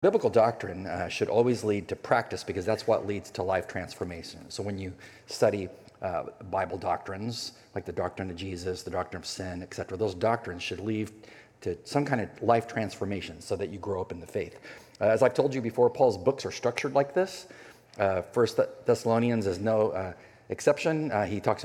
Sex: male